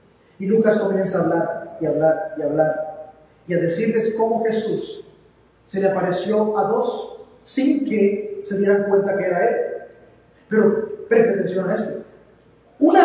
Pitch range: 195-290 Hz